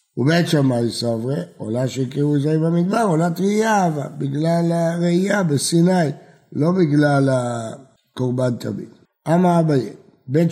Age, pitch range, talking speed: 60-79, 130-170 Hz, 115 wpm